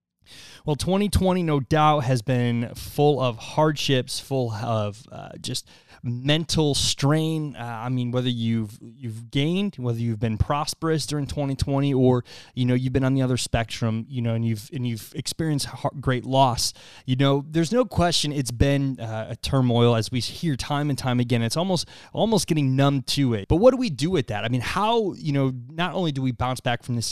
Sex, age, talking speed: male, 20-39, 200 wpm